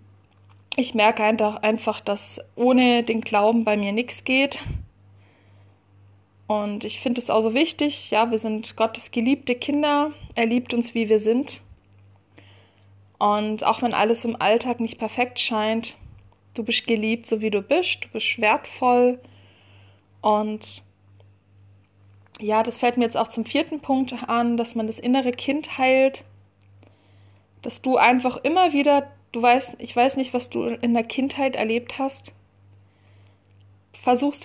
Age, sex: 20-39, female